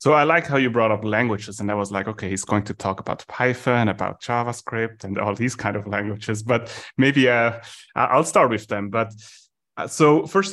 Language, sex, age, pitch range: English, male, 30-49, 100-120 Hz